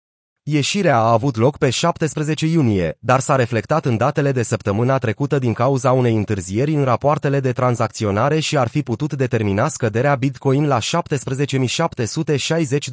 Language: Romanian